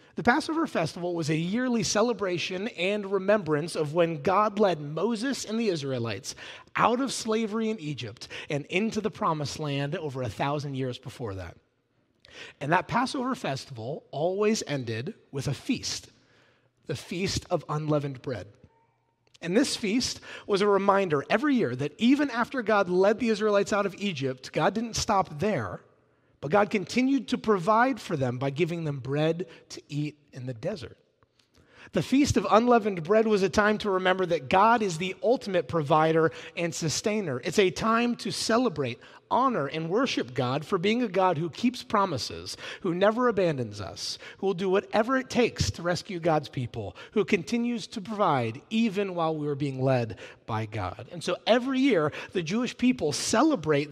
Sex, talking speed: male, 170 wpm